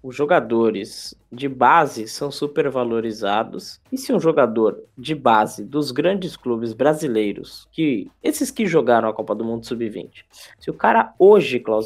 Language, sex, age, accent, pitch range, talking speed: Portuguese, male, 10-29, Brazilian, 120-180 Hz, 155 wpm